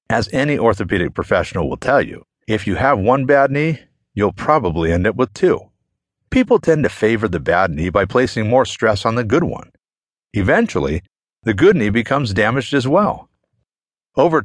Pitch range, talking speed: 100-140 Hz, 180 wpm